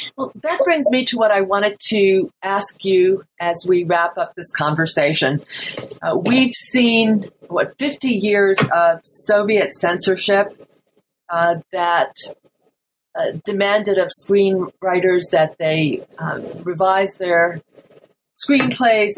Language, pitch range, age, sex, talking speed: English, 170-215 Hz, 40-59, female, 120 wpm